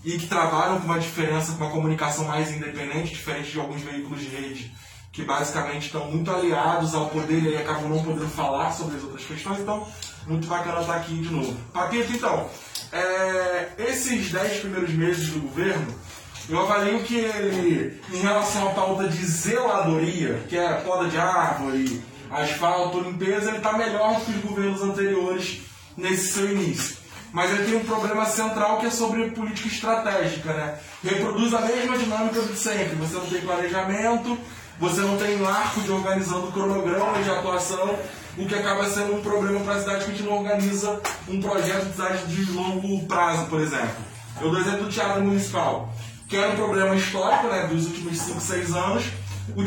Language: Portuguese